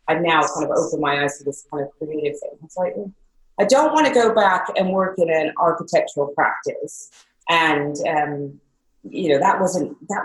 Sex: female